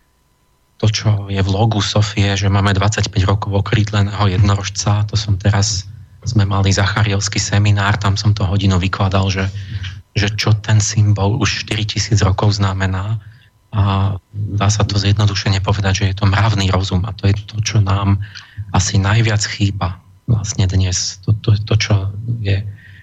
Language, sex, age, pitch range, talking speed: Slovak, male, 30-49, 100-110 Hz, 155 wpm